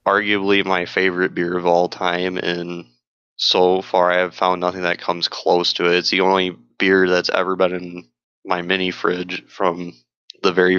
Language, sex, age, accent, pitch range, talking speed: English, male, 20-39, American, 90-100 Hz, 185 wpm